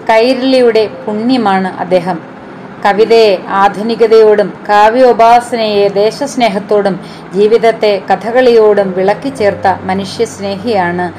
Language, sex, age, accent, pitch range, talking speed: Malayalam, female, 30-49, native, 200-230 Hz, 65 wpm